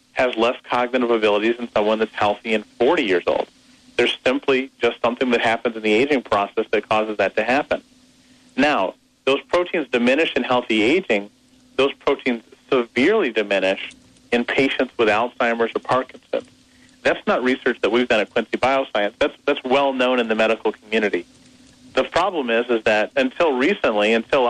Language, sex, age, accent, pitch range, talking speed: English, male, 40-59, American, 115-145 Hz, 170 wpm